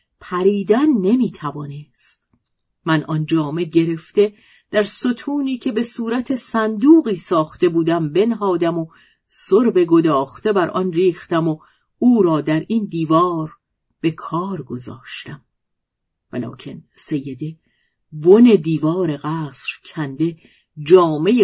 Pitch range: 155-220 Hz